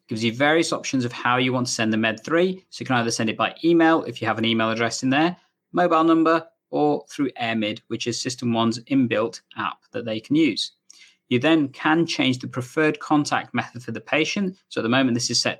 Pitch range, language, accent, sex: 115-160 Hz, English, British, male